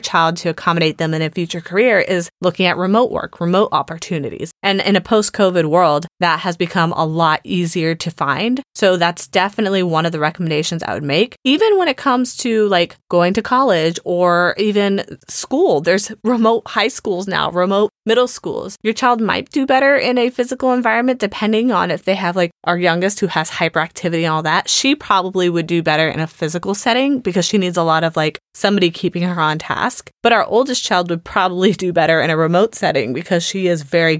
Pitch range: 170-205 Hz